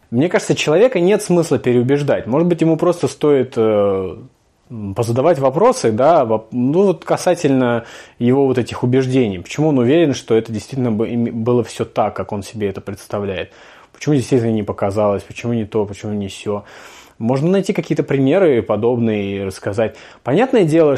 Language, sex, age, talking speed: Russian, male, 20-39, 160 wpm